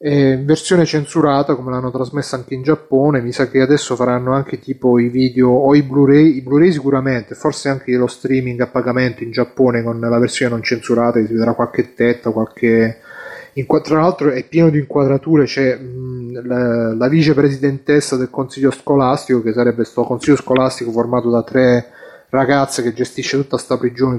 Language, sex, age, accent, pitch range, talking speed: Italian, male, 30-49, native, 125-145 Hz, 180 wpm